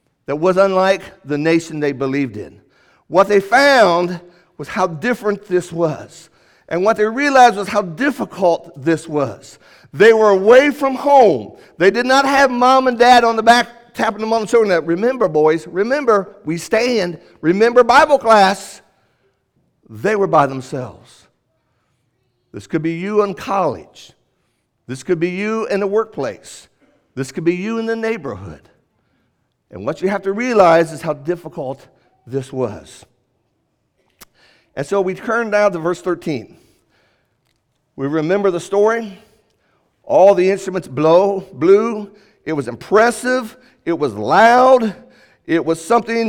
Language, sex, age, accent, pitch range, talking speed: English, male, 60-79, American, 165-230 Hz, 145 wpm